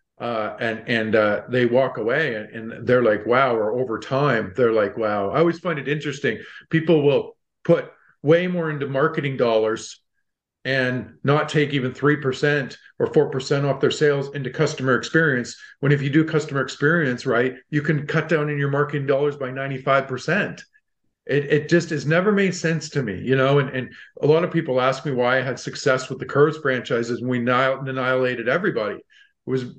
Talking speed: 190 wpm